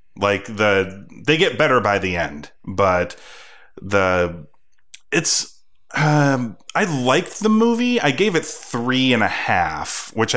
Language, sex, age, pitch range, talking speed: English, male, 30-49, 90-120 Hz, 140 wpm